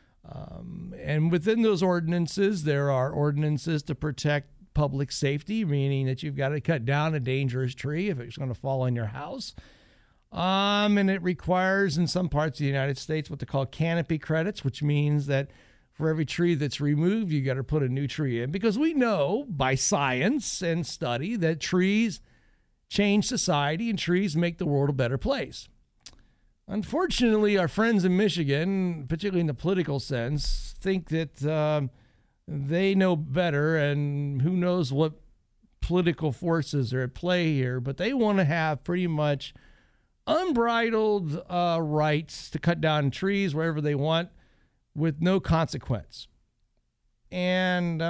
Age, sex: 60-79, male